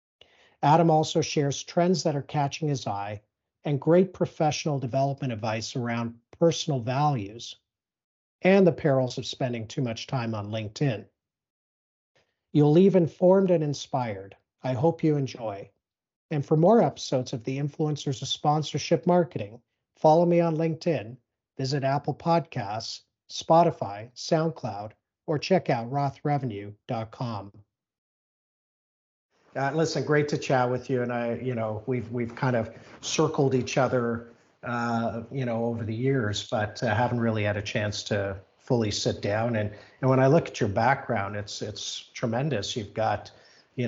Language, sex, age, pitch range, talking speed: English, male, 50-69, 110-145 Hz, 150 wpm